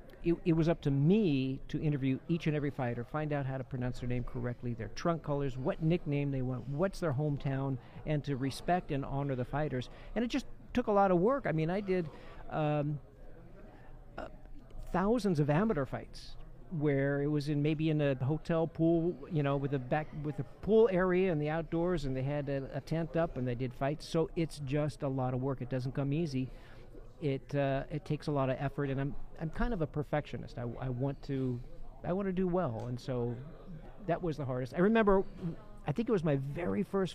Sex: male